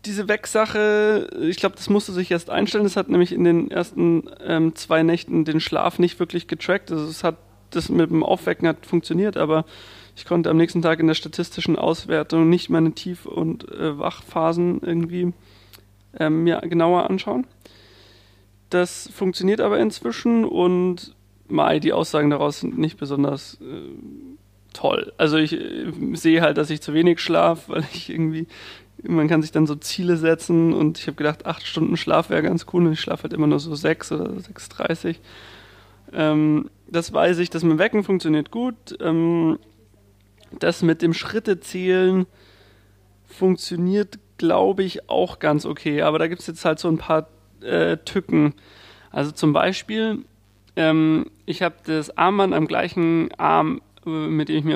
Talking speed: 170 wpm